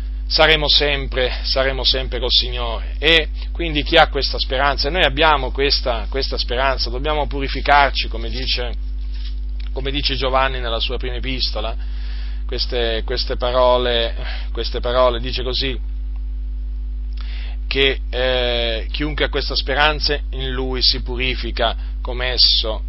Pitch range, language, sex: 115-135 Hz, Italian, male